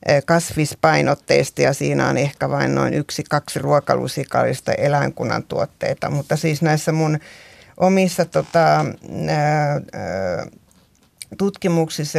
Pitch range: 145-165 Hz